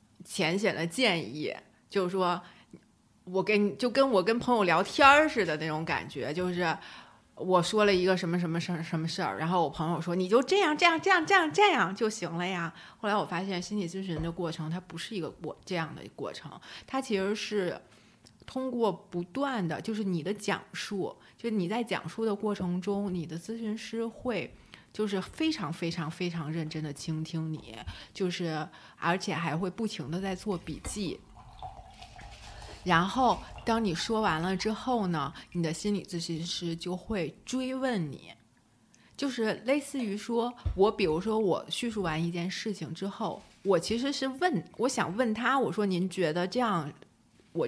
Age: 30-49